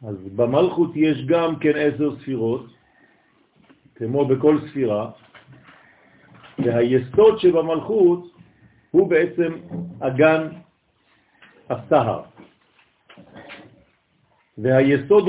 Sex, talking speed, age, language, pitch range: male, 65 wpm, 50-69, French, 130-170 Hz